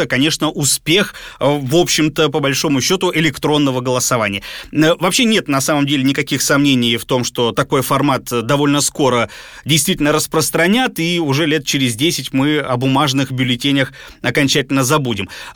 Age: 30-49